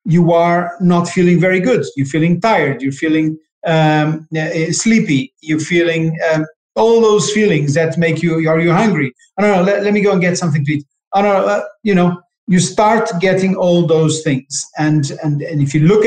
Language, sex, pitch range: English, male, 155-190 Hz